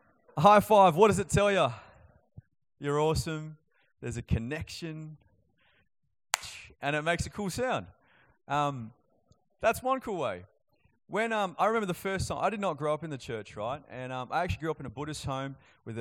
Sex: male